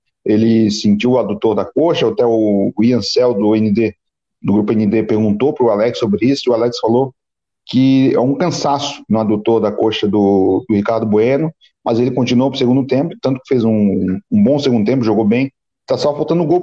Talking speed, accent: 210 wpm, Brazilian